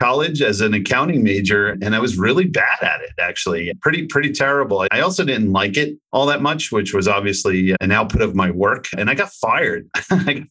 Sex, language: male, English